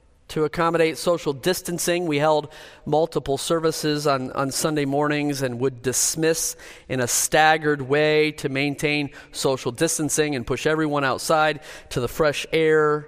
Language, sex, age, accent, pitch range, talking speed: English, male, 40-59, American, 145-185 Hz, 140 wpm